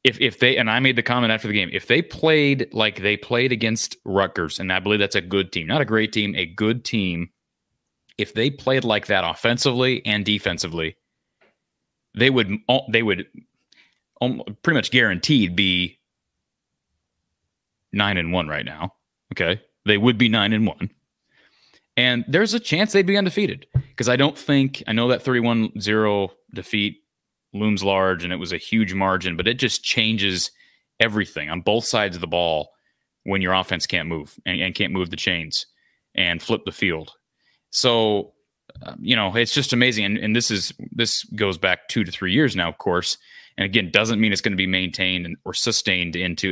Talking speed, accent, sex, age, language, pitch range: 185 wpm, American, male, 30-49, English, 95-115 Hz